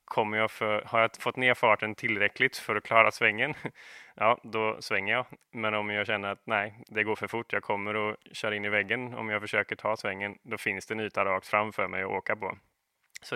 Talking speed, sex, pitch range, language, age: 230 wpm, male, 105-115 Hz, Swedish, 20-39